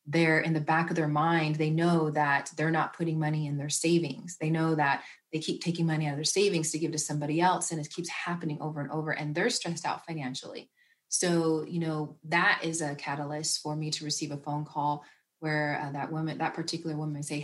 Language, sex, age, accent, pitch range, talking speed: English, female, 30-49, American, 150-170 Hz, 230 wpm